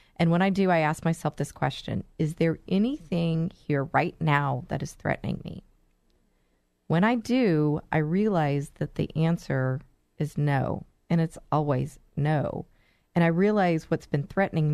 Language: English